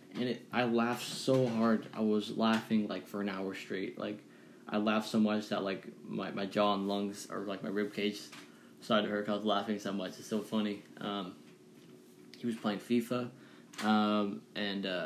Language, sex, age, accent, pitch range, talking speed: English, male, 10-29, American, 105-120 Hz, 200 wpm